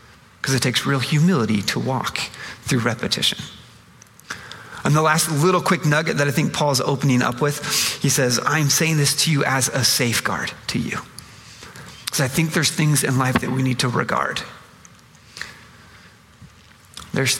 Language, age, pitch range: English, 30-49, 125-150 Hz